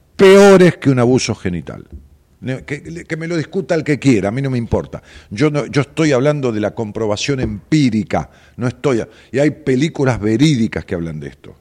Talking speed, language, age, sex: 200 wpm, Spanish, 50-69, male